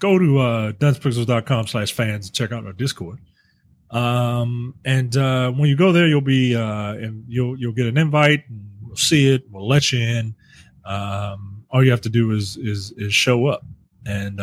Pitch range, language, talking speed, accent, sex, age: 105-140 Hz, English, 195 wpm, American, male, 30-49